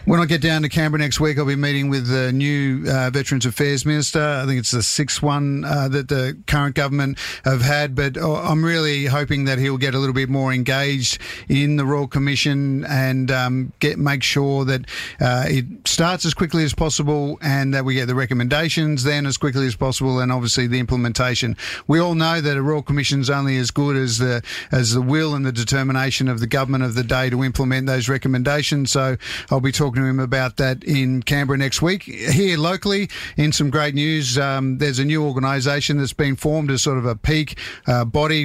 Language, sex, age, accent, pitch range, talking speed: English, male, 50-69, Australian, 130-145 Hz, 215 wpm